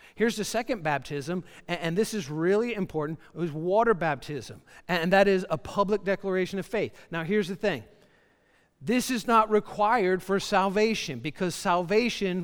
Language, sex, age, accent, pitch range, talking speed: English, male, 50-69, American, 145-200 Hz, 160 wpm